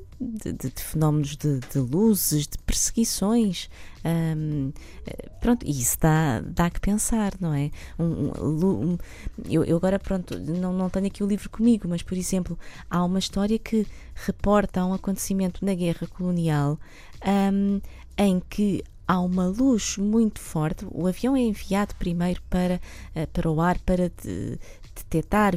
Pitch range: 165-205 Hz